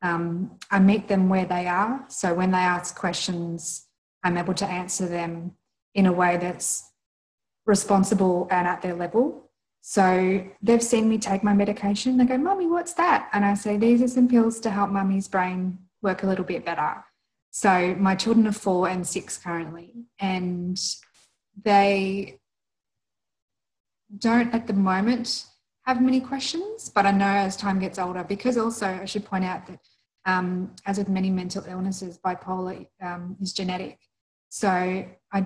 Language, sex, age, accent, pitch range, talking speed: English, female, 20-39, Australian, 180-205 Hz, 165 wpm